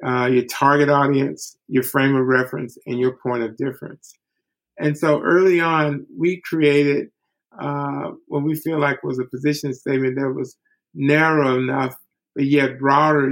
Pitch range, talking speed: 125-145 Hz, 160 wpm